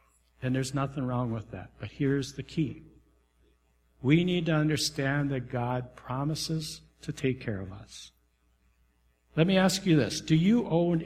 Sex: male